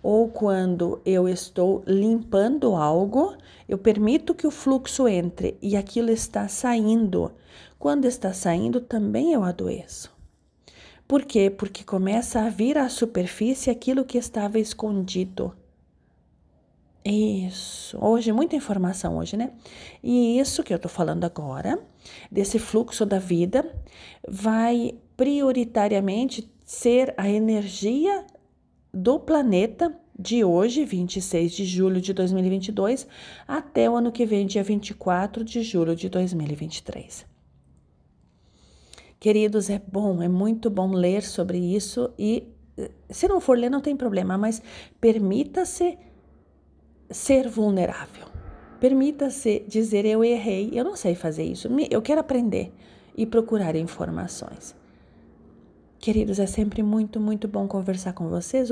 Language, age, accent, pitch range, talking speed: Portuguese, 40-59, Brazilian, 185-240 Hz, 125 wpm